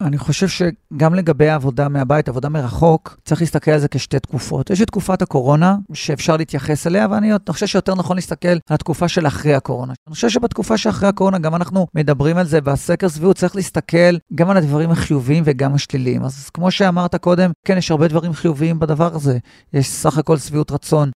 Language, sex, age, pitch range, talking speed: Hebrew, male, 40-59, 145-180 Hz, 190 wpm